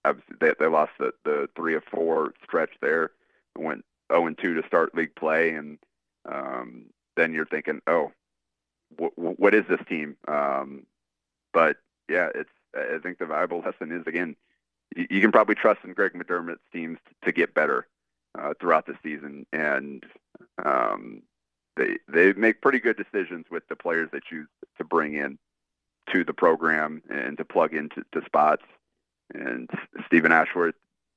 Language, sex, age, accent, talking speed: English, male, 30-49, American, 160 wpm